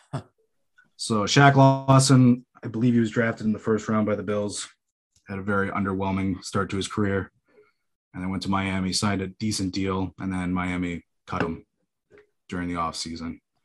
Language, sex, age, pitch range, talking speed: English, male, 20-39, 95-120 Hz, 175 wpm